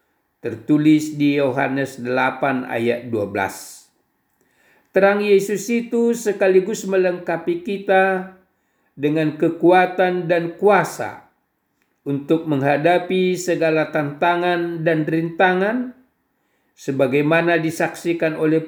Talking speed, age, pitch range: 80 wpm, 50-69, 145-185 Hz